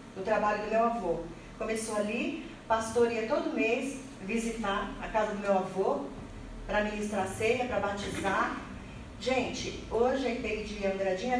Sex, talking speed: female, 145 wpm